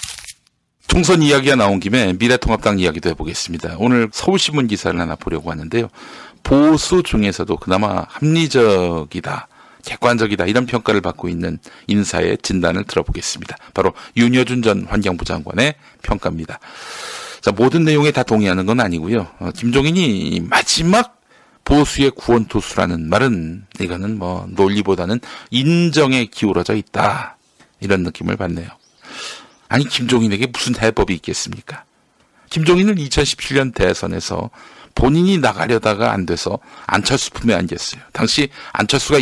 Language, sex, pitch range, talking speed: English, male, 100-150 Hz, 105 wpm